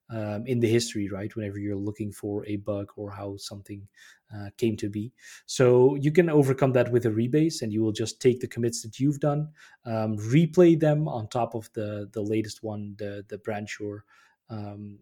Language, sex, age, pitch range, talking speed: English, male, 20-39, 110-135 Hz, 205 wpm